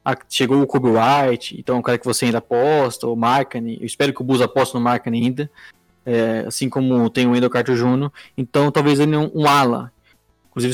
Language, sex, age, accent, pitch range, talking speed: Portuguese, male, 20-39, Brazilian, 120-145 Hz, 210 wpm